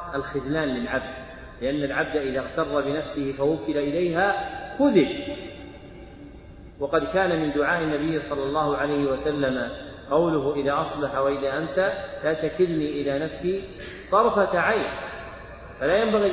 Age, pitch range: 40-59, 140-170 Hz